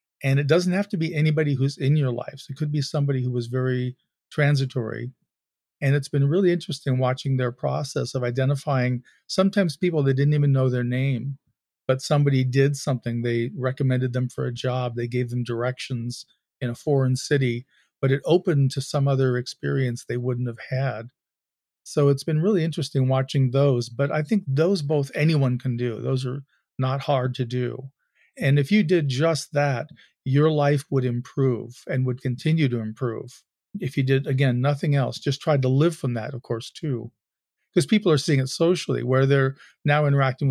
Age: 40-59